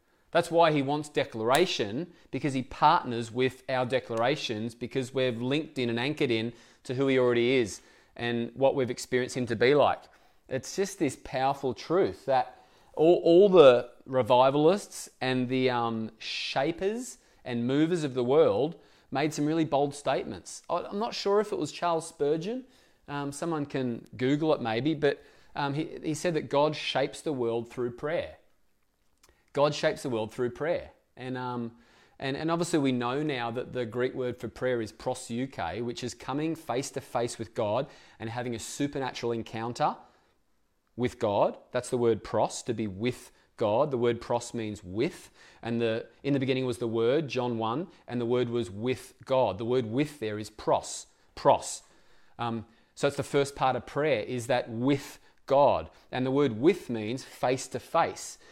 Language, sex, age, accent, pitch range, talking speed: English, male, 30-49, Australian, 120-145 Hz, 175 wpm